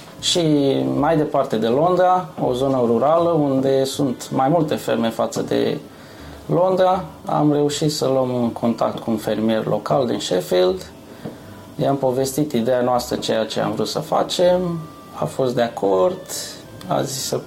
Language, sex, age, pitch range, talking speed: Romanian, male, 20-39, 125-165 Hz, 155 wpm